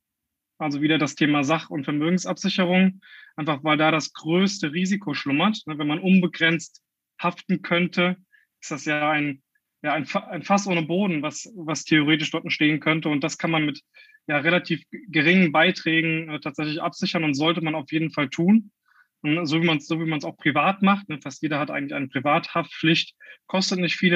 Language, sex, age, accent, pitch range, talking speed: German, male, 20-39, German, 155-190 Hz, 165 wpm